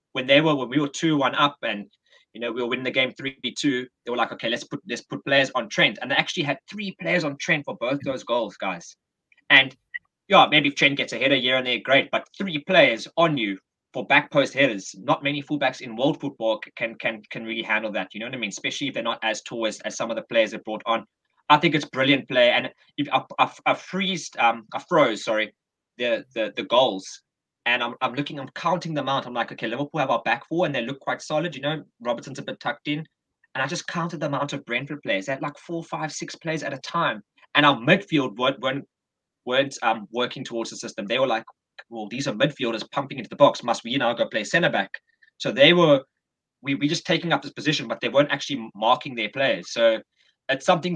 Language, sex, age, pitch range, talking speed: English, male, 20-39, 125-155 Hz, 245 wpm